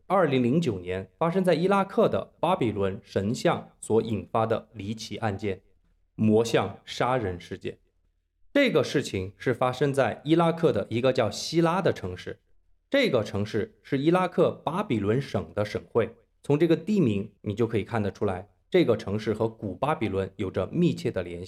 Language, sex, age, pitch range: Chinese, male, 20-39, 100-165 Hz